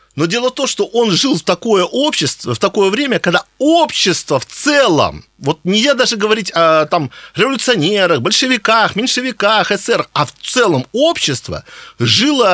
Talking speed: 160 wpm